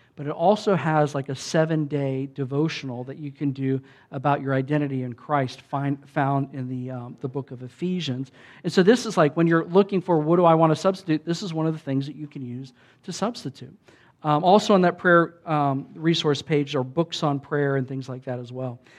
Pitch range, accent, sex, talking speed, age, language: 135-165 Hz, American, male, 220 wpm, 50-69, English